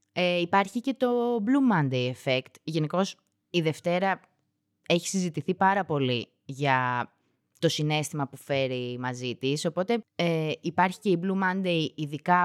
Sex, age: female, 20-39